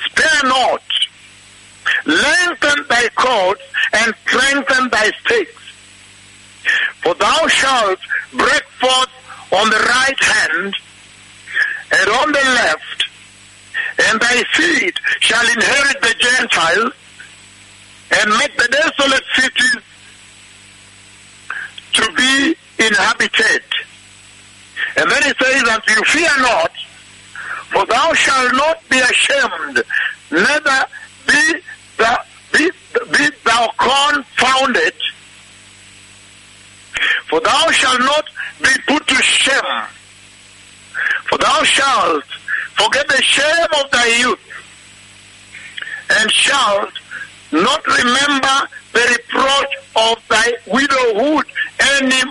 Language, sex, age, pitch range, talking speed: English, male, 60-79, 230-320 Hz, 100 wpm